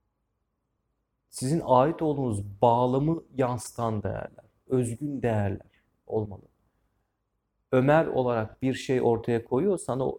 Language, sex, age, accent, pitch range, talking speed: Turkish, male, 40-59, native, 110-130 Hz, 95 wpm